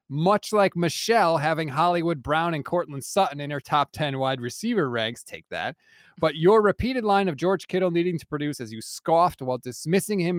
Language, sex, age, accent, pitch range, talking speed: English, male, 30-49, American, 135-180 Hz, 195 wpm